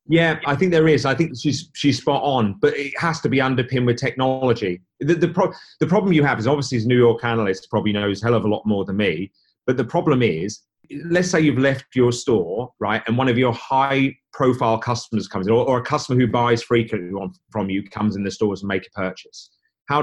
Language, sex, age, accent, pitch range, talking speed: English, male, 30-49, British, 110-135 Hz, 245 wpm